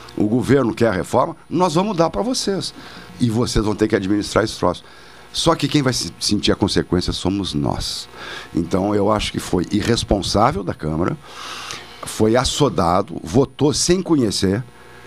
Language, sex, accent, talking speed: Portuguese, male, Brazilian, 160 wpm